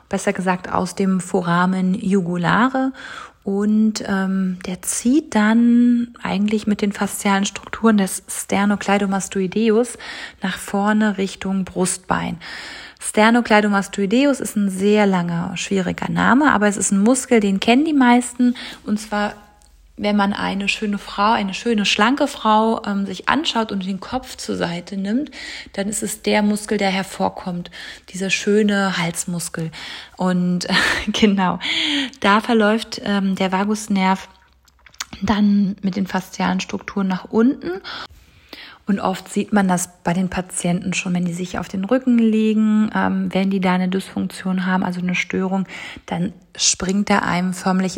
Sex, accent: female, German